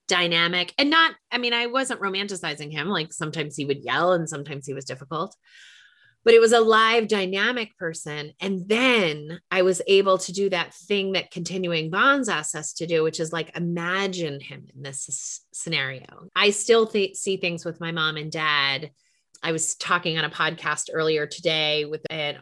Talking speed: 185 wpm